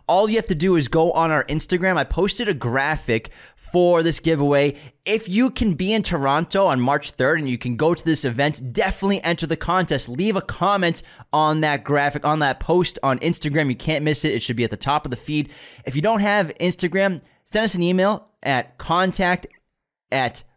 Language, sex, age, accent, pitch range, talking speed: English, male, 20-39, American, 125-170 Hz, 210 wpm